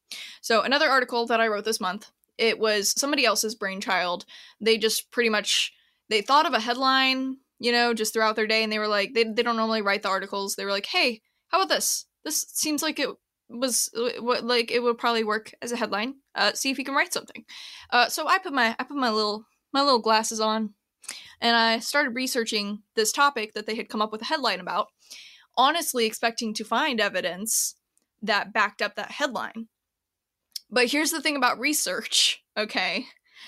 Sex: female